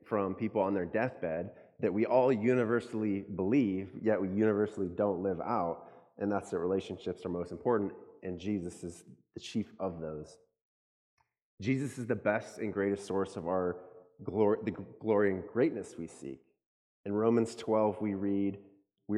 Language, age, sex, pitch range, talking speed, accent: English, 30-49, male, 90-110 Hz, 165 wpm, American